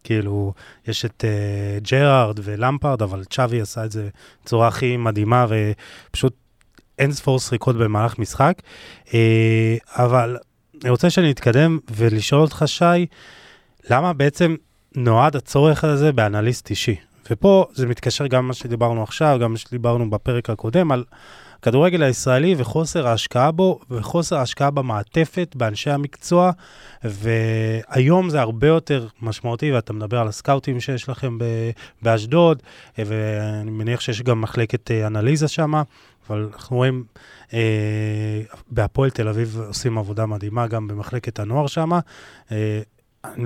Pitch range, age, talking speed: 110-135 Hz, 20-39, 130 wpm